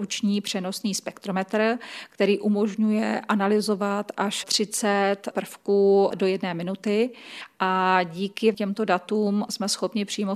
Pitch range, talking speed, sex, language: 190-205 Hz, 110 wpm, female, Czech